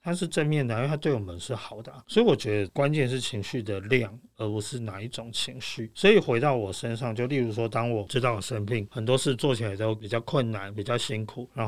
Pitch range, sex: 110-135 Hz, male